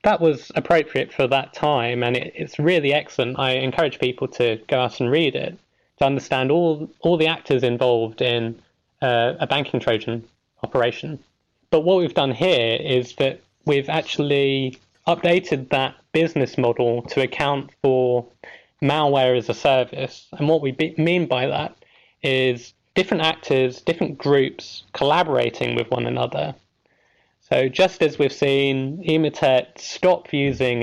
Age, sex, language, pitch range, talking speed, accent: 20-39, male, English, 120-150 Hz, 145 wpm, British